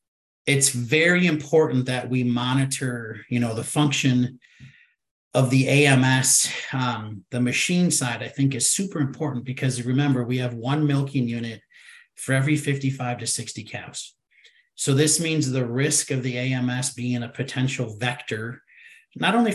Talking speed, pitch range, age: 150 wpm, 120-140 Hz, 40-59